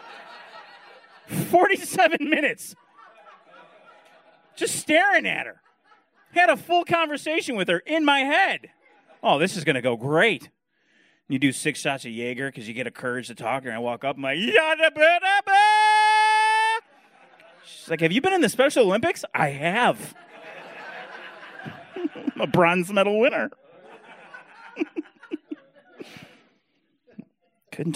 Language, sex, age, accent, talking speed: English, male, 30-49, American, 125 wpm